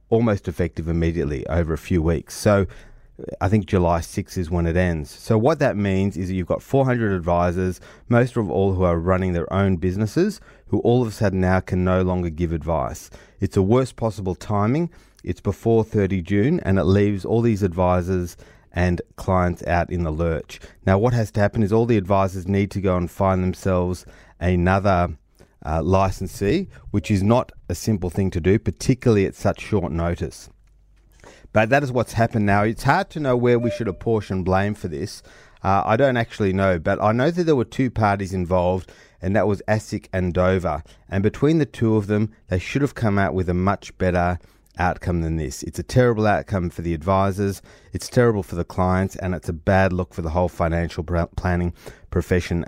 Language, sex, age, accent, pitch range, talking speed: English, male, 30-49, Australian, 90-105 Hz, 200 wpm